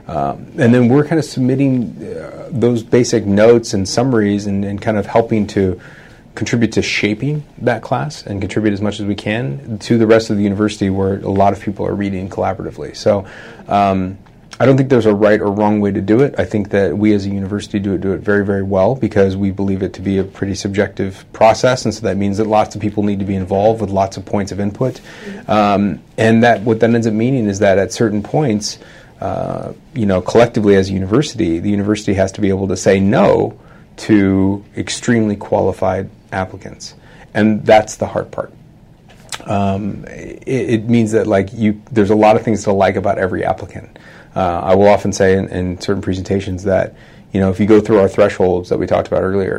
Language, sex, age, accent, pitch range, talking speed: English, male, 30-49, American, 95-115 Hz, 215 wpm